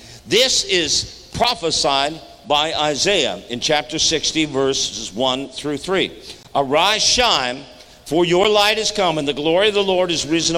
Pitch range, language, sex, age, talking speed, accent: 155-215 Hz, English, male, 50-69, 155 wpm, American